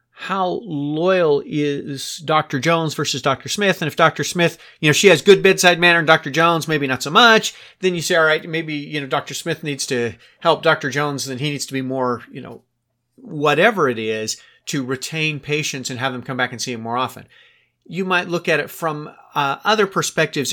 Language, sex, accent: English, male, American